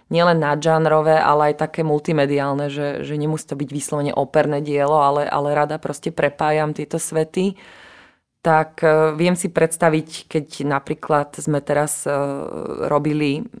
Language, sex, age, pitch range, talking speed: Slovak, female, 30-49, 145-160 Hz, 130 wpm